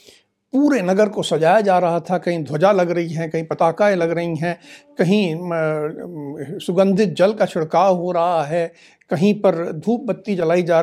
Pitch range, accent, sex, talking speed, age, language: 170-245 Hz, native, male, 170 wpm, 60-79, Hindi